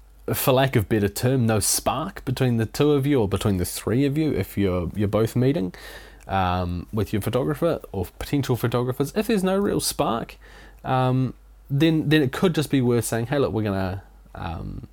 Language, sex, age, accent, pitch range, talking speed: English, male, 20-39, Australian, 95-140 Hz, 195 wpm